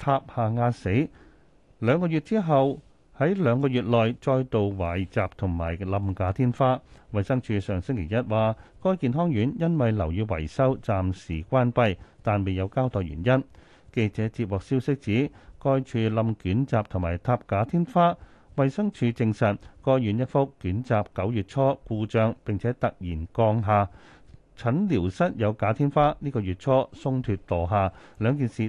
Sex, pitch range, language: male, 95-135 Hz, Chinese